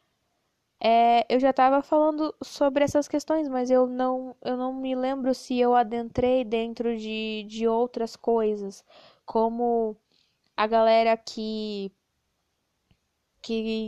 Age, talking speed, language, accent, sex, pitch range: 10-29, 110 wpm, Portuguese, Brazilian, female, 215-245 Hz